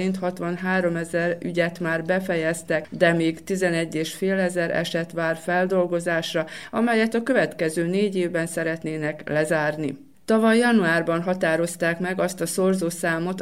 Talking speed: 115 wpm